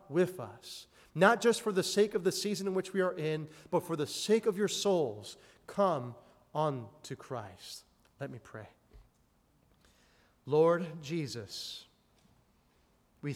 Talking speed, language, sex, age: 140 wpm, English, male, 30-49